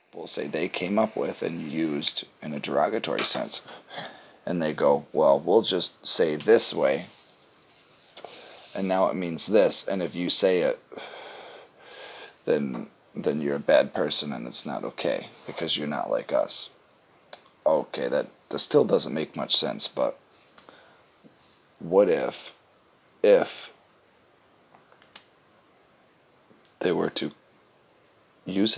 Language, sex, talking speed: English, male, 130 wpm